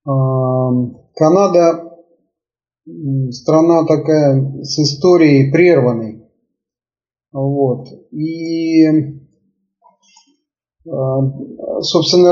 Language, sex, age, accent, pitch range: Russian, male, 30-49, native, 140-175 Hz